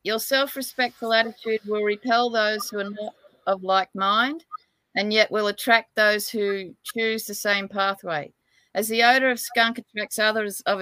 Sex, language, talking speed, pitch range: female, English, 165 wpm, 200-235 Hz